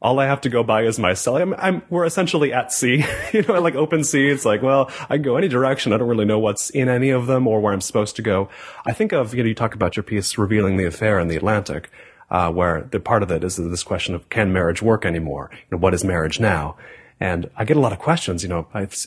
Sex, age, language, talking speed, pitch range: male, 30-49, English, 280 wpm, 95-135 Hz